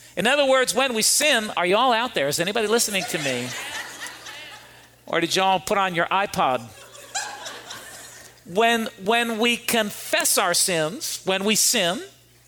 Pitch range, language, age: 190-255 Hz, English, 50-69